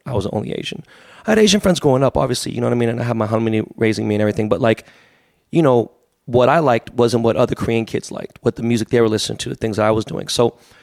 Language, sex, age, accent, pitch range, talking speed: English, male, 30-49, American, 110-135 Hz, 290 wpm